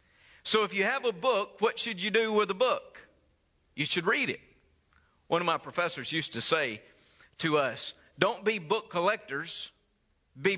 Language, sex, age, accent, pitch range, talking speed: English, male, 40-59, American, 150-215 Hz, 175 wpm